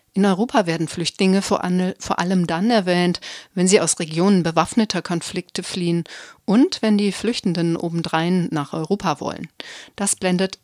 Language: German